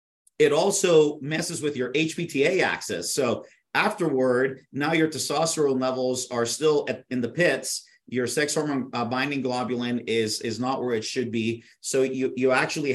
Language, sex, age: English, male, 40-59